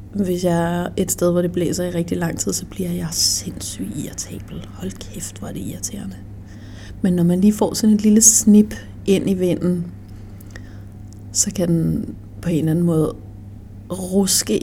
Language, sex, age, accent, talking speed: Danish, female, 30-49, native, 175 wpm